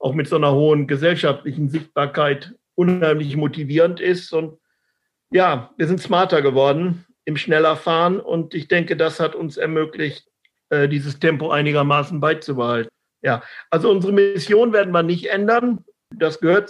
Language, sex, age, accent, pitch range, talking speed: German, male, 50-69, German, 150-175 Hz, 145 wpm